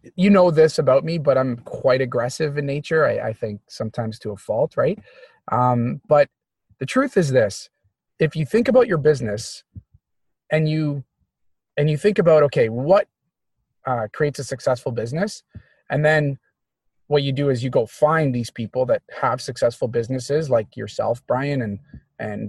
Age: 30-49